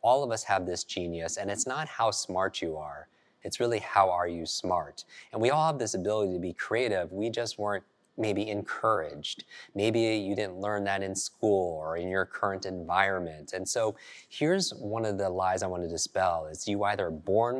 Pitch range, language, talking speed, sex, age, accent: 90-110 Hz, English, 205 wpm, male, 30-49, American